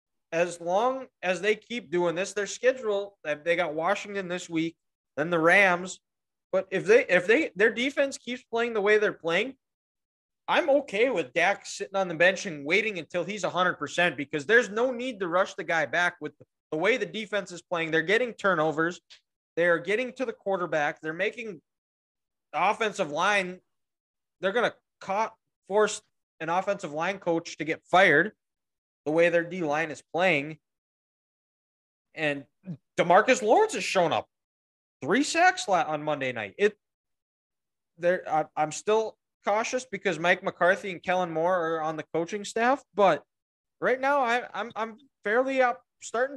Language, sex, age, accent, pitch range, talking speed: English, male, 20-39, American, 165-220 Hz, 165 wpm